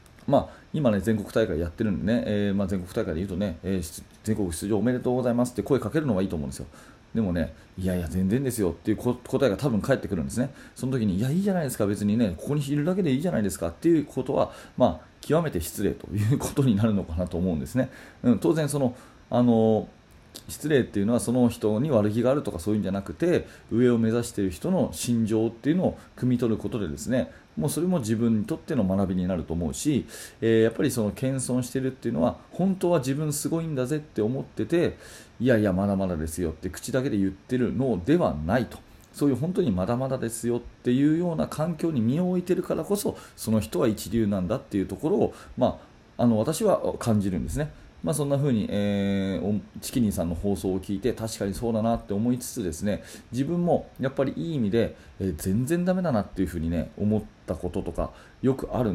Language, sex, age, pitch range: Japanese, male, 30-49, 95-130 Hz